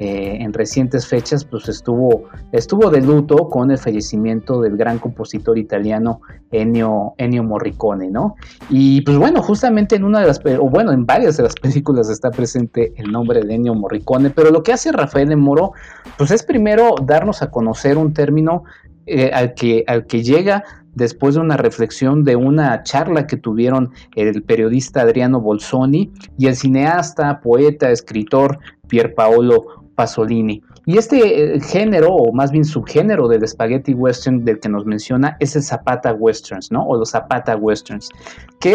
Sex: male